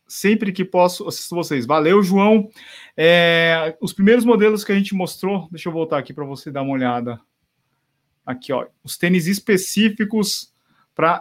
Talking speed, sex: 160 wpm, male